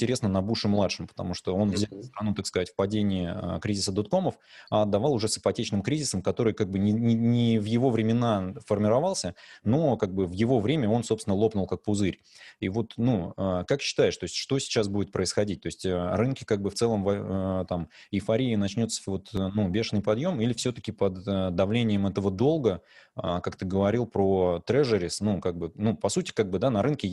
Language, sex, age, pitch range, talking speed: Russian, male, 20-39, 95-115 Hz, 195 wpm